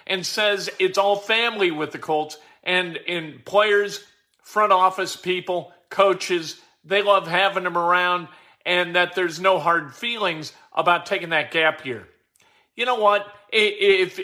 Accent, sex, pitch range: American, male, 160-200 Hz